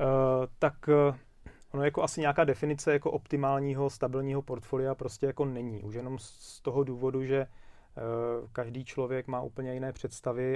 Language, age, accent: Czech, 30-49, native